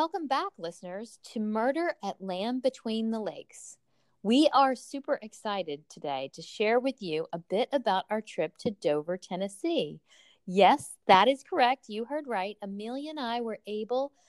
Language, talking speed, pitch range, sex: English, 165 wpm, 160-240 Hz, female